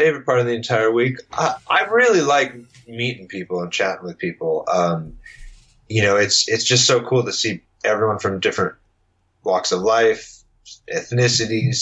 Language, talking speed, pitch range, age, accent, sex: English, 170 wpm, 110-140 Hz, 30-49, American, male